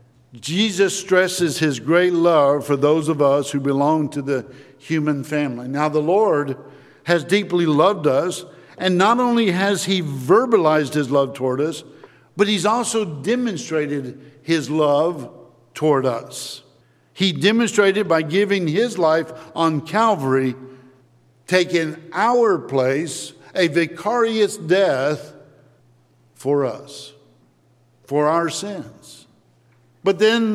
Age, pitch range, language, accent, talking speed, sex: 60-79, 145-190 Hz, English, American, 120 wpm, male